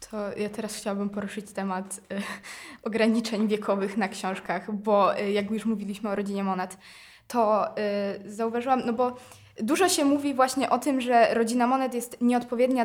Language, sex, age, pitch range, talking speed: Polish, female, 20-39, 220-265 Hz, 150 wpm